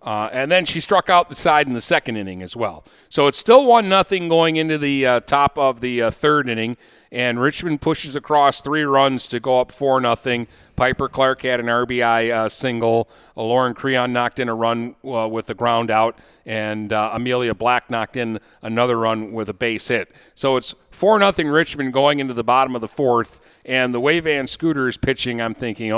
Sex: male